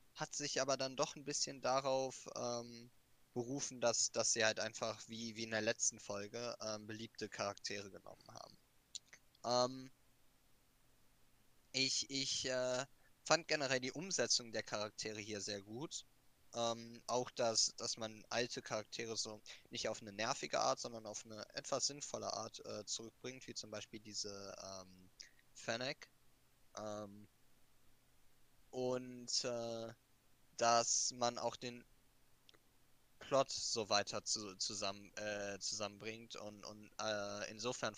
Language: German